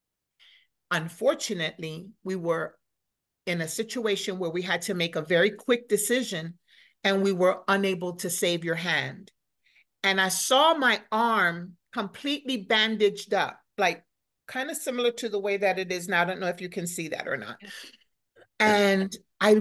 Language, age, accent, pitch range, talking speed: English, 50-69, American, 180-225 Hz, 165 wpm